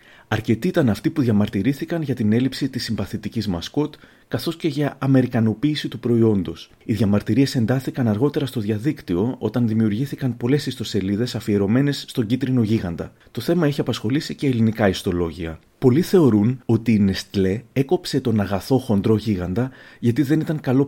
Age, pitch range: 30-49, 105-140 Hz